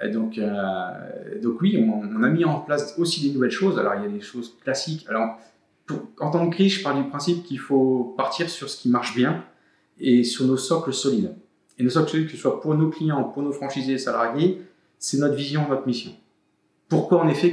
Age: 30-49